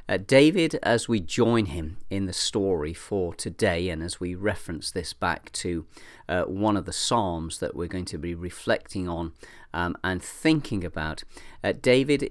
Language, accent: English, British